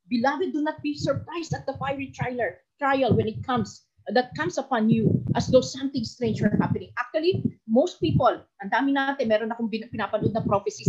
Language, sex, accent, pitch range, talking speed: Filipino, female, native, 215-320 Hz, 195 wpm